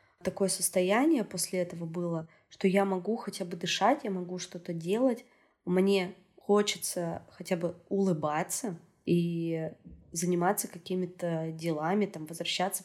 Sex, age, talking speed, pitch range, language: female, 20-39, 120 wpm, 170-195 Hz, Russian